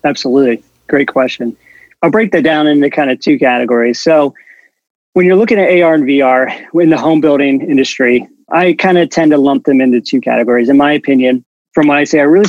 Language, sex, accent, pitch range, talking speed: English, male, American, 130-160 Hz, 210 wpm